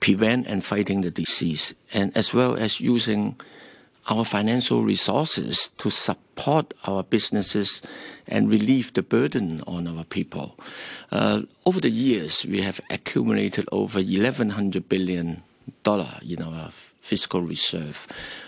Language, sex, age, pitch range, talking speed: English, male, 50-69, 95-110 Hz, 130 wpm